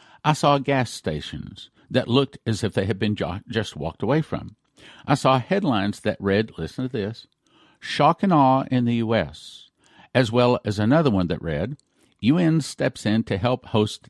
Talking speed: 180 wpm